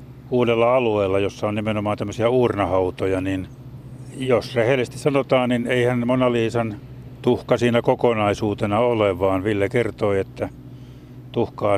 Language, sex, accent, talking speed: Finnish, male, native, 120 wpm